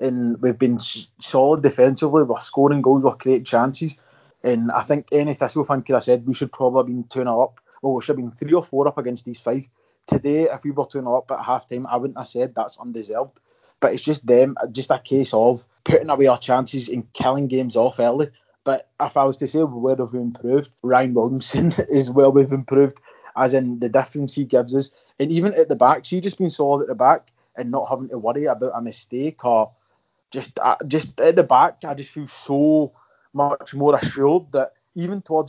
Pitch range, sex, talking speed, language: 125-145 Hz, male, 225 wpm, English